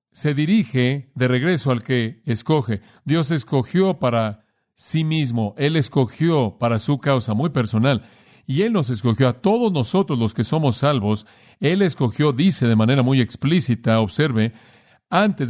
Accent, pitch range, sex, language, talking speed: Mexican, 120-150 Hz, male, Spanish, 150 wpm